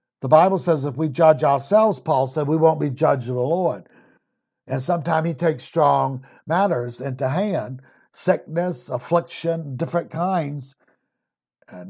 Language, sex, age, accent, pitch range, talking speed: English, male, 60-79, American, 135-175 Hz, 145 wpm